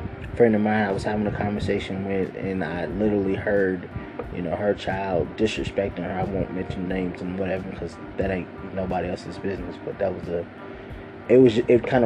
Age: 20-39